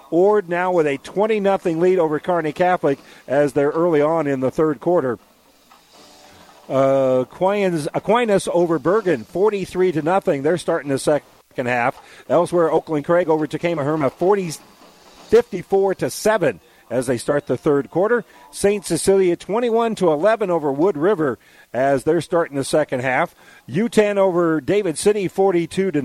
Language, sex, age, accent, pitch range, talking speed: English, male, 50-69, American, 140-185 Hz, 160 wpm